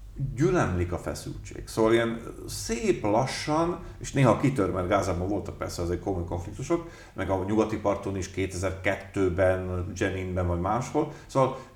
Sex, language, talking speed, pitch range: male, Hungarian, 145 wpm, 95-120 Hz